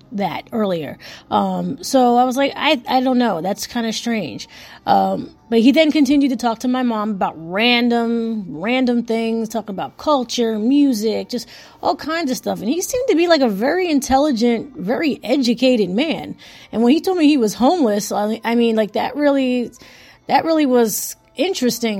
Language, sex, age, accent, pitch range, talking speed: English, female, 30-49, American, 210-265 Hz, 185 wpm